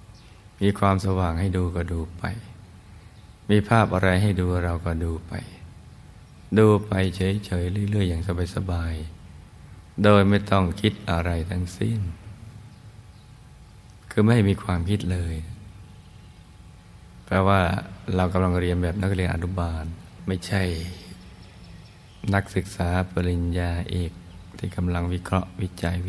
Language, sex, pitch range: Thai, male, 90-100 Hz